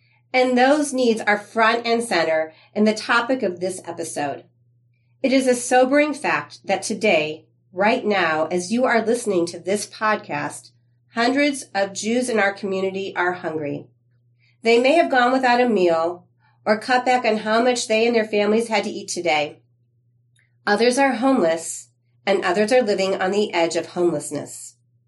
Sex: female